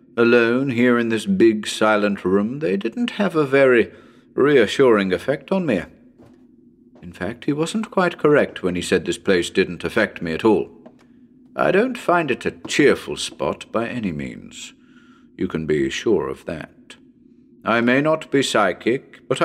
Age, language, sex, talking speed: 50-69, English, male, 165 wpm